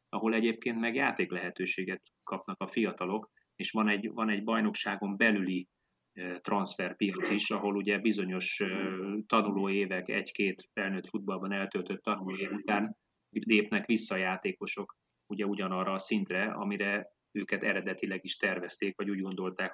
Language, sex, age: Hungarian, male, 30-49